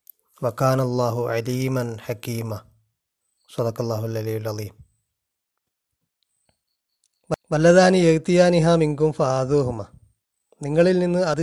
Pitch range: 125-160 Hz